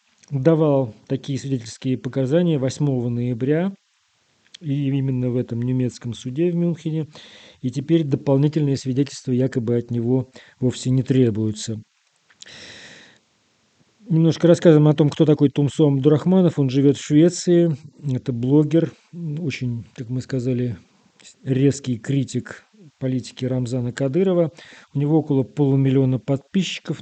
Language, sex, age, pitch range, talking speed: Russian, male, 40-59, 125-150 Hz, 115 wpm